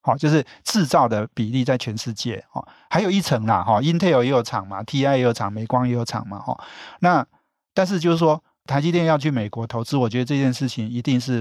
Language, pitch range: Chinese, 115-155 Hz